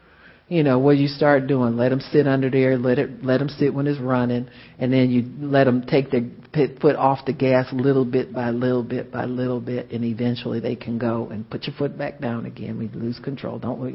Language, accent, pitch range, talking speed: English, American, 115-135 Hz, 240 wpm